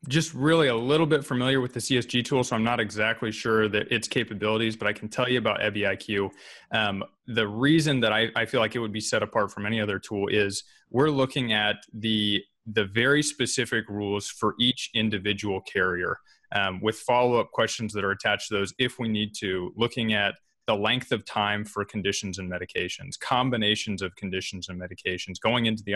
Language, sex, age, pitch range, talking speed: English, male, 20-39, 105-125 Hz, 200 wpm